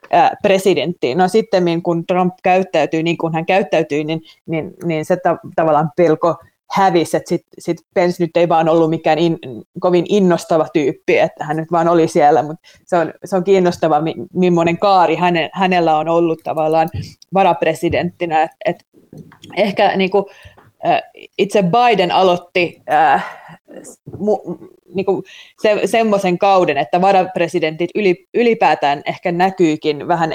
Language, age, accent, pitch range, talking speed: Finnish, 30-49, native, 160-190 Hz, 135 wpm